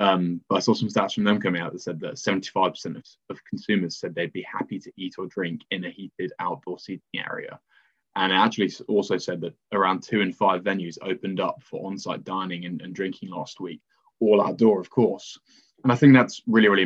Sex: male